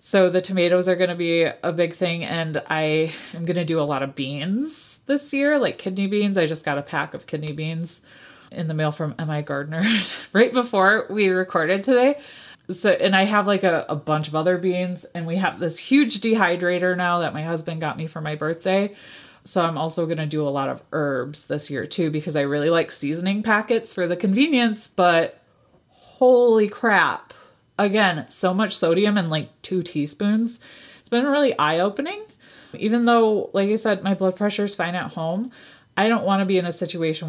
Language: English